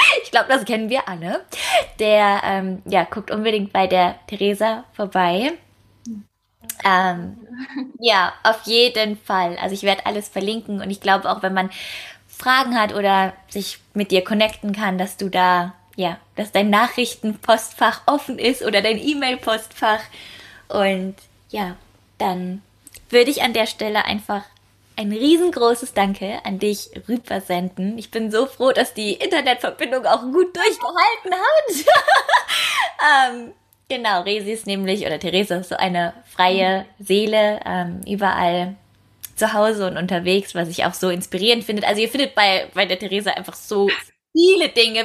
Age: 20-39